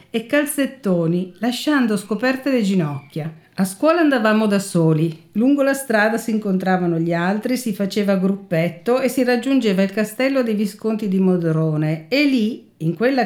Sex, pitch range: female, 180-245 Hz